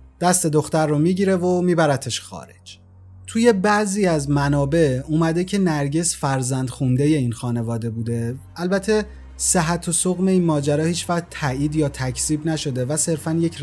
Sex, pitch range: male, 130-170 Hz